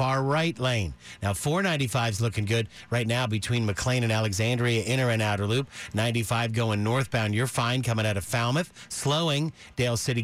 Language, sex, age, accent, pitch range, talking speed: English, male, 50-69, American, 110-130 Hz, 175 wpm